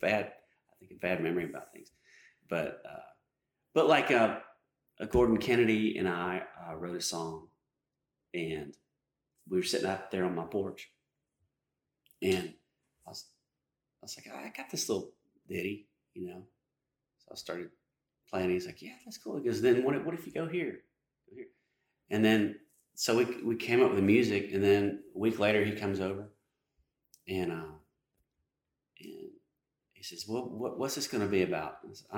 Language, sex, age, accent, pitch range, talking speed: English, male, 30-49, American, 90-120 Hz, 175 wpm